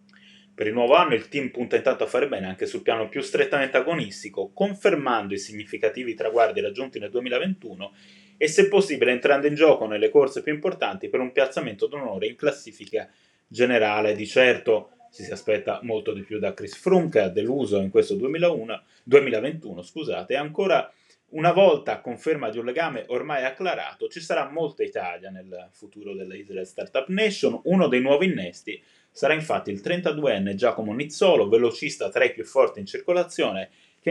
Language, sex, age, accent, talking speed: Italian, male, 30-49, native, 165 wpm